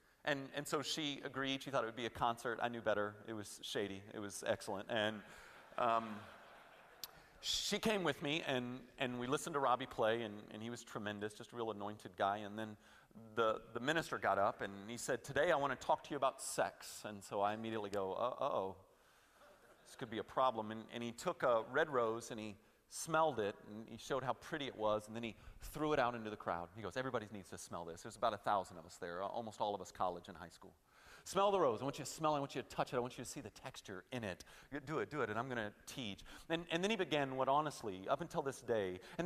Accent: American